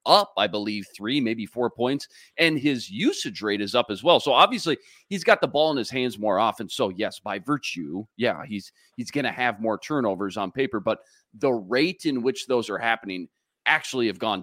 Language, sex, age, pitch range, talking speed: English, male, 30-49, 110-175 Hz, 210 wpm